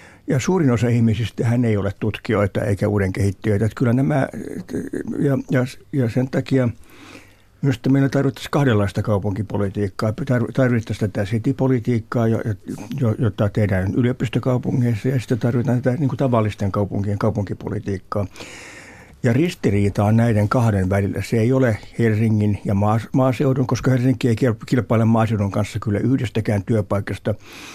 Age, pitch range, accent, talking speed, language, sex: 60-79, 105-125 Hz, native, 125 wpm, Finnish, male